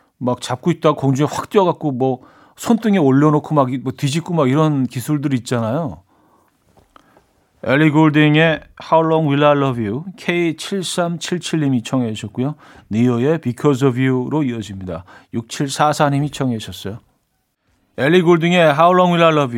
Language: Korean